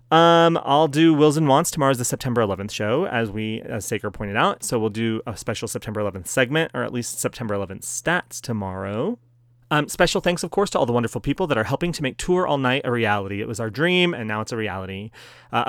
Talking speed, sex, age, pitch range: 235 wpm, male, 30-49, 110-145 Hz